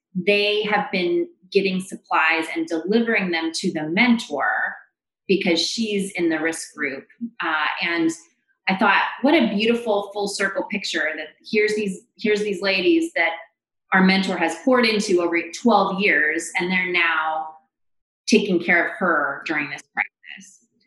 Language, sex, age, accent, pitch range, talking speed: English, female, 30-49, American, 165-225 Hz, 150 wpm